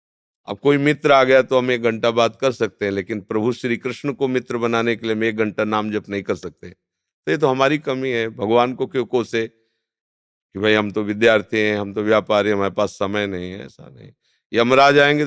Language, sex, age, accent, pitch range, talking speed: Hindi, male, 50-69, native, 105-130 Hz, 230 wpm